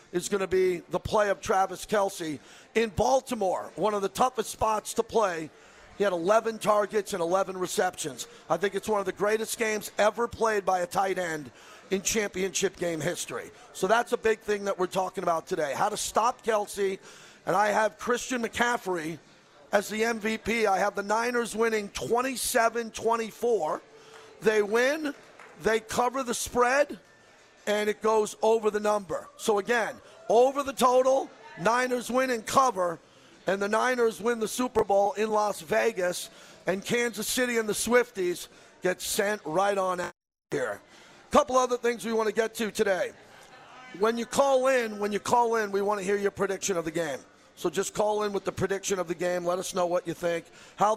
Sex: male